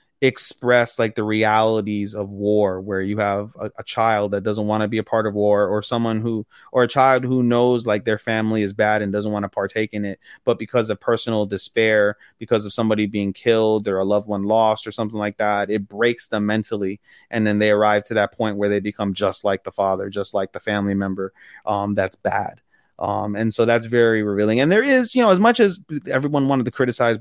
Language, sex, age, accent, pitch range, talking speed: English, male, 20-39, American, 105-135 Hz, 230 wpm